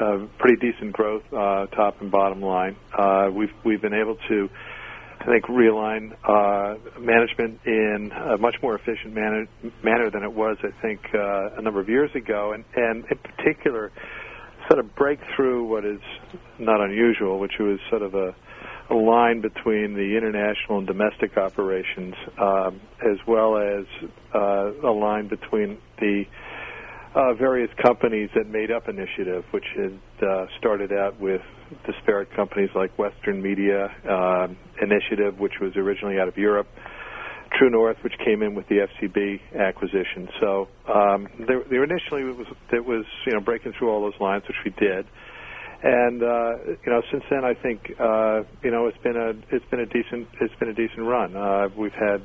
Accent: American